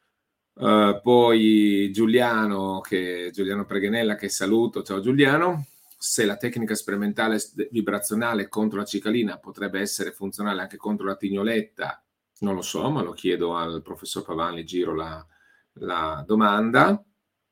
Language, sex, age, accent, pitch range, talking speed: Italian, male, 40-59, native, 95-110 Hz, 130 wpm